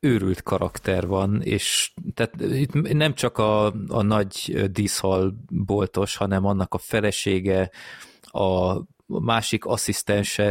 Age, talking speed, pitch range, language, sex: 30-49, 110 wpm, 95-110 Hz, Hungarian, male